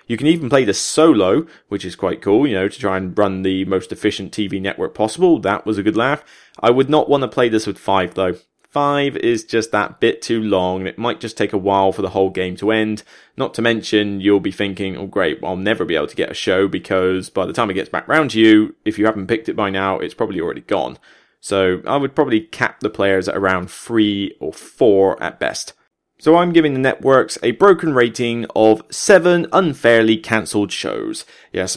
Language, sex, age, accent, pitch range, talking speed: English, male, 20-39, British, 100-135 Hz, 230 wpm